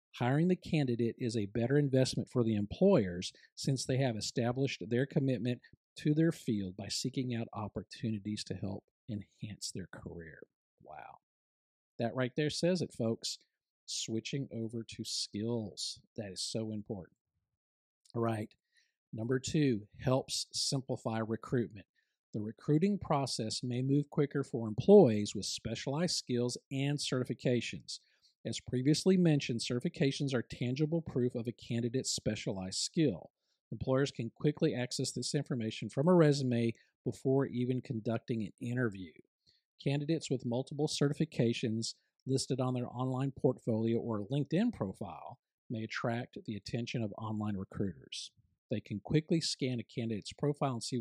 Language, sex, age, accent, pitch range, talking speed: English, male, 50-69, American, 110-140 Hz, 140 wpm